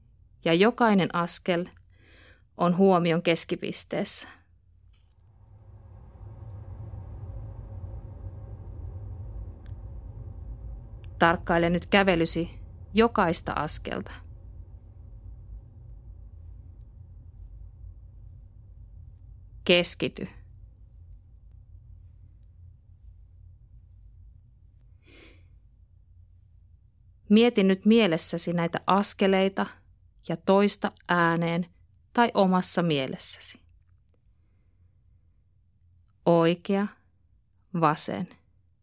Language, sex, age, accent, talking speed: Finnish, female, 30-49, native, 40 wpm